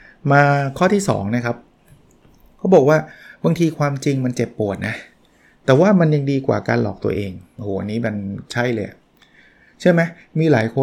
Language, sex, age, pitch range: Thai, male, 20-39, 115-140 Hz